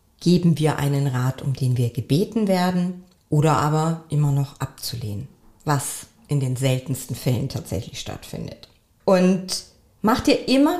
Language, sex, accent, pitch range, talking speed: German, female, German, 165-230 Hz, 140 wpm